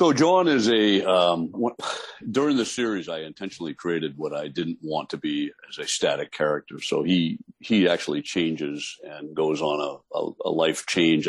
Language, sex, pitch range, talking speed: English, male, 75-90 Hz, 175 wpm